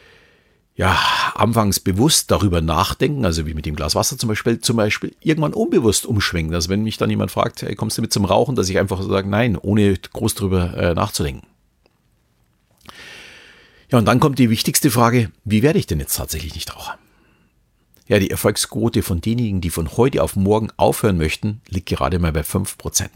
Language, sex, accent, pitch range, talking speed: German, male, German, 85-115 Hz, 185 wpm